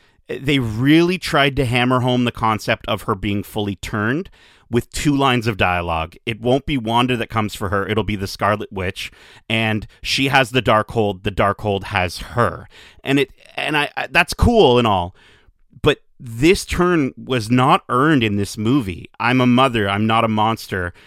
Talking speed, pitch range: 185 wpm, 105-140 Hz